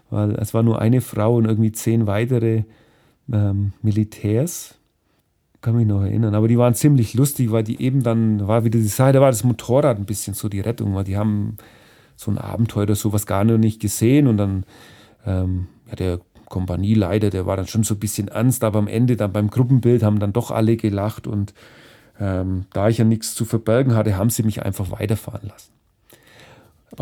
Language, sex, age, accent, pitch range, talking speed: German, male, 40-59, German, 105-125 Hz, 200 wpm